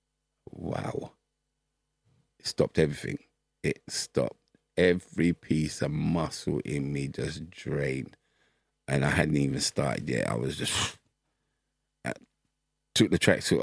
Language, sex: English, male